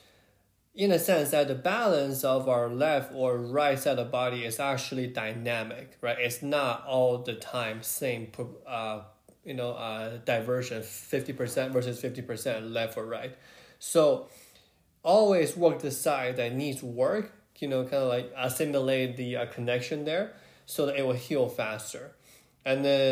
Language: English